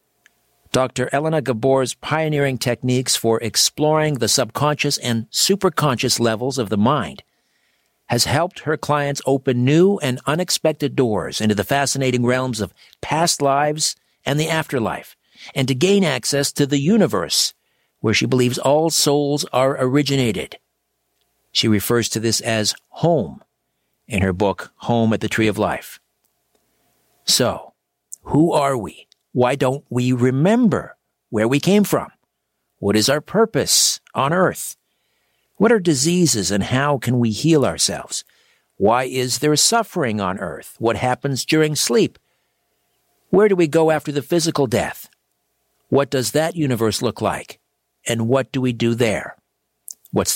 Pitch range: 120-150 Hz